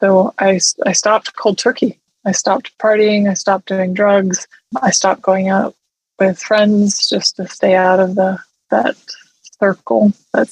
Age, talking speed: 20-39, 160 wpm